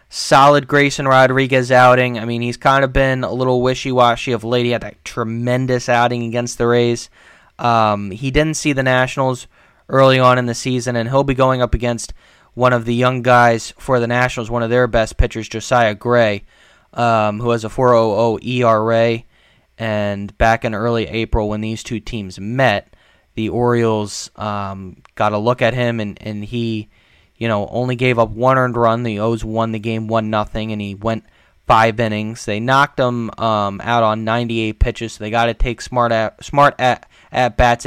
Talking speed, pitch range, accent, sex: 190 wpm, 110-125 Hz, American, male